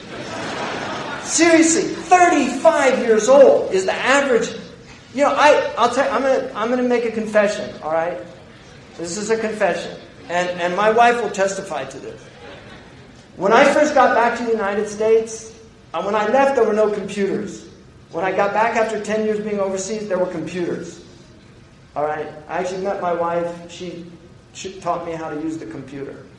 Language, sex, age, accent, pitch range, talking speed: English, male, 40-59, American, 180-245 Hz, 175 wpm